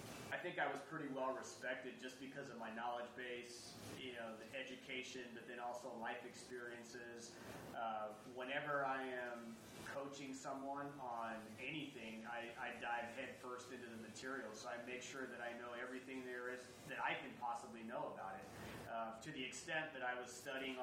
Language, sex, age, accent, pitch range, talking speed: English, male, 30-49, American, 115-130 Hz, 180 wpm